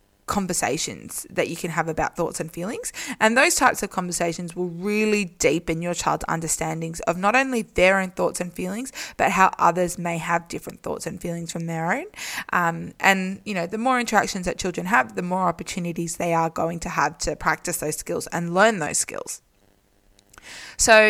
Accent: Australian